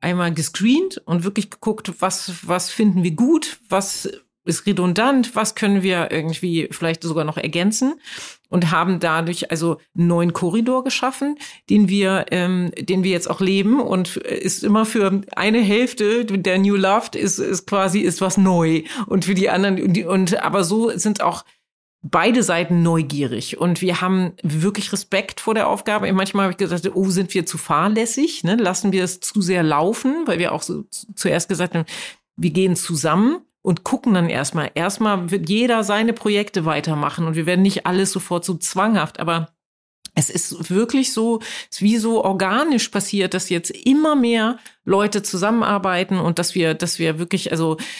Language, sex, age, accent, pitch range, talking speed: German, female, 40-59, German, 175-215 Hz, 175 wpm